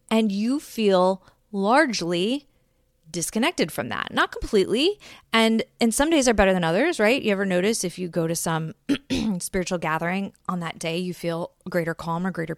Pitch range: 165-210 Hz